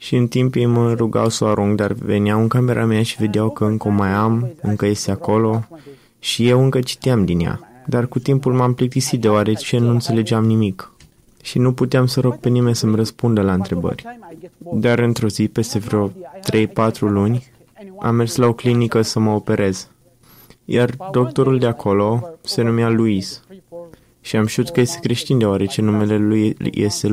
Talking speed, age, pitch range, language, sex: 185 wpm, 20-39, 110-130 Hz, Romanian, male